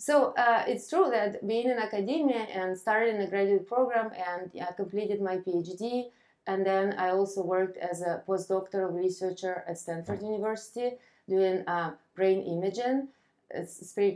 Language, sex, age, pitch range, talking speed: English, female, 20-39, 185-220 Hz, 160 wpm